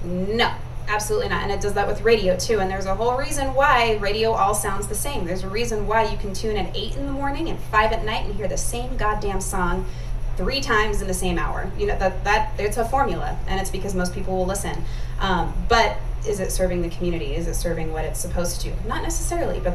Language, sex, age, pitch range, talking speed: English, female, 20-39, 155-215 Hz, 245 wpm